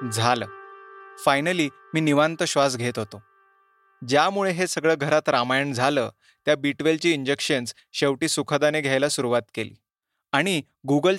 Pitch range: 135-170 Hz